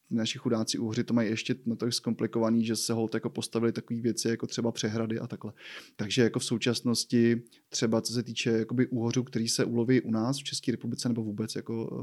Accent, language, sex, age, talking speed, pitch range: native, Czech, male, 20-39, 200 wpm, 110-120 Hz